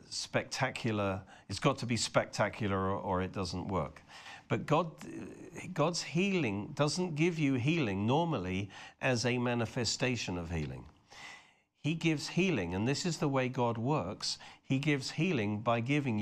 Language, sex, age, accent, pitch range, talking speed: English, male, 50-69, British, 110-155 Hz, 145 wpm